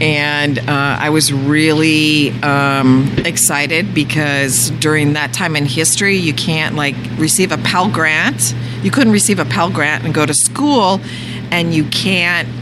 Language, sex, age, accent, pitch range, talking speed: English, female, 50-69, American, 135-165 Hz, 155 wpm